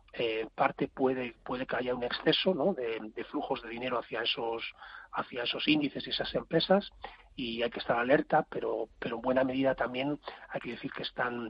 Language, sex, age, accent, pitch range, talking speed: Spanish, male, 40-59, Spanish, 110-135 Hz, 200 wpm